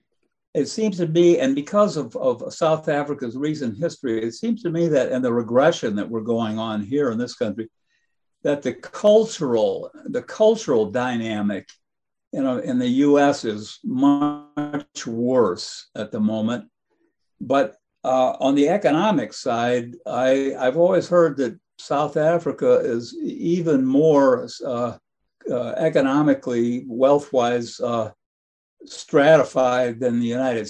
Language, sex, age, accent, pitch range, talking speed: English, male, 60-79, American, 125-175 Hz, 135 wpm